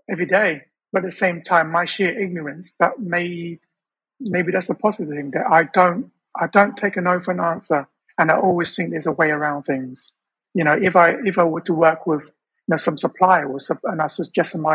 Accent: British